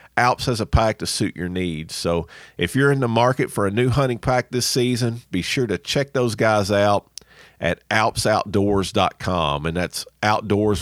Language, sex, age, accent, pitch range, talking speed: English, male, 40-59, American, 90-115 Hz, 185 wpm